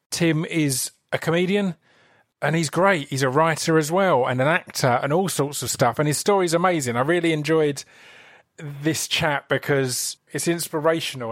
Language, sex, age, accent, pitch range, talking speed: English, male, 30-49, British, 130-155 Hz, 170 wpm